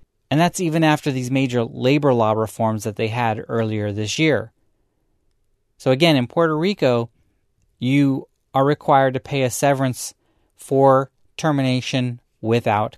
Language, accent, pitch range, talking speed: English, American, 115-150 Hz, 140 wpm